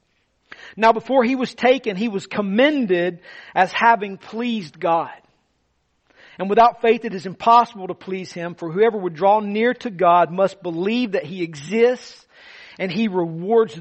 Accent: American